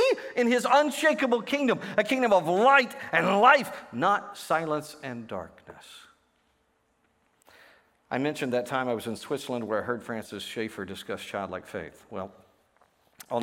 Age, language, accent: 50-69, English, American